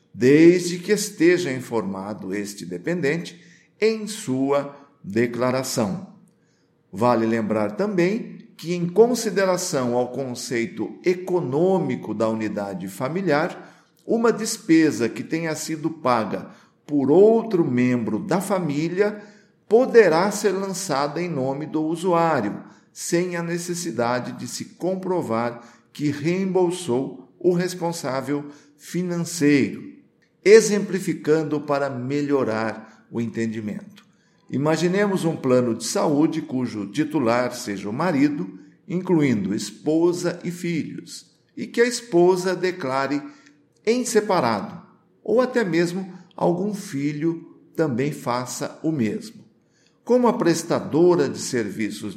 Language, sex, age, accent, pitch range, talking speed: Portuguese, male, 50-69, Brazilian, 125-185 Hz, 105 wpm